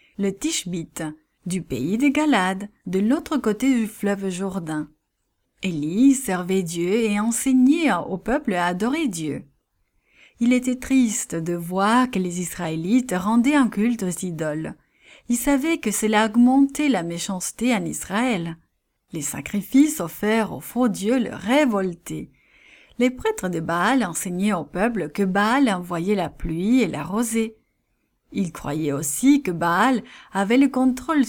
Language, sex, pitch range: English, female, 180-250 Hz